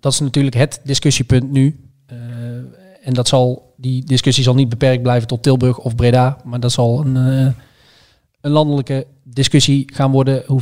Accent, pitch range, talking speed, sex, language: Dutch, 125-145 Hz, 175 wpm, male, Dutch